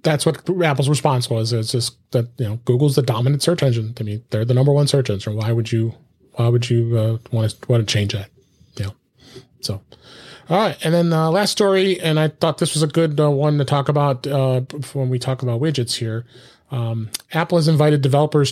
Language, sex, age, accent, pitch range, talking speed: English, male, 30-49, American, 120-150 Hz, 220 wpm